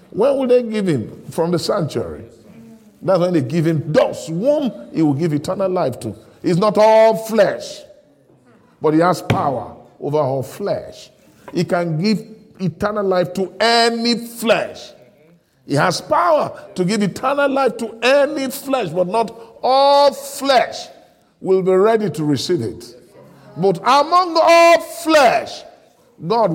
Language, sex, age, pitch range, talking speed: English, male, 50-69, 135-220 Hz, 145 wpm